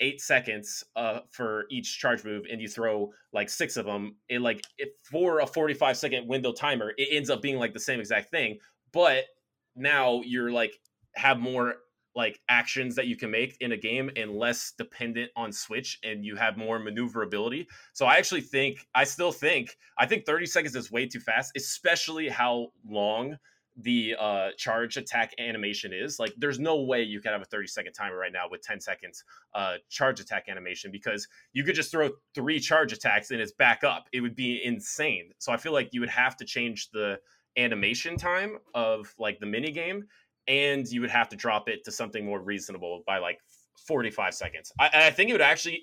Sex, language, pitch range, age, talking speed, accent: male, English, 110-145 Hz, 20-39, 205 wpm, American